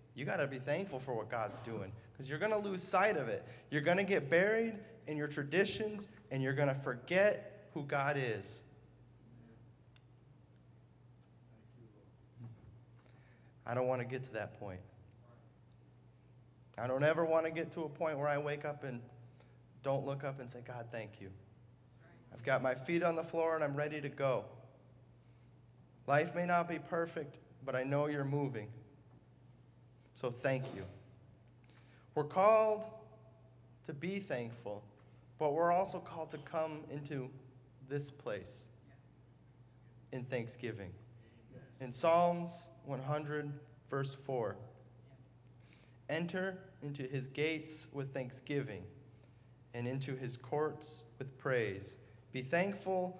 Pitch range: 120-150 Hz